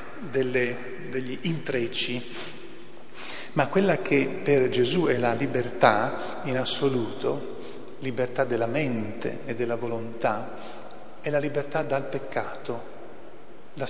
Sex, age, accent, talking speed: male, 40-59, native, 105 wpm